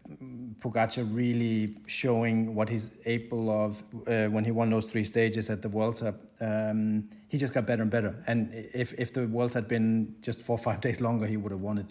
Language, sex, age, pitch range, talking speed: English, male, 40-59, 110-130 Hz, 220 wpm